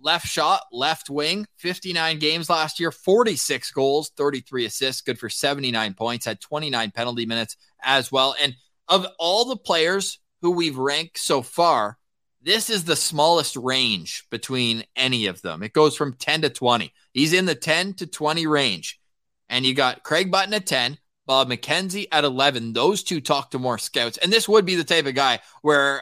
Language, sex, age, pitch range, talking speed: English, male, 20-39, 125-165 Hz, 185 wpm